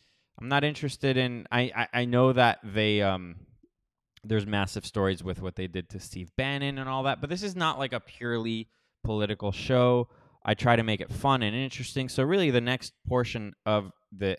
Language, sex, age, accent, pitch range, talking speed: English, male, 20-39, American, 100-130 Hz, 205 wpm